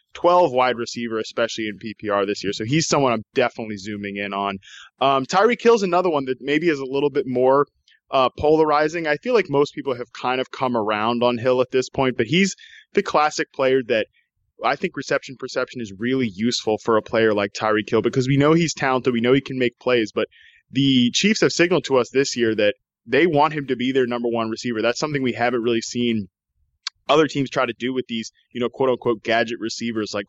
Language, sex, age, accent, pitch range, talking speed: English, male, 20-39, American, 115-135 Hz, 225 wpm